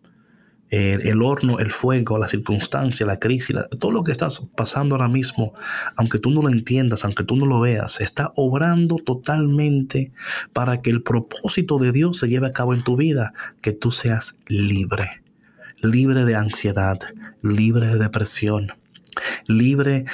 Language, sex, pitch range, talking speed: Spanish, male, 110-145 Hz, 160 wpm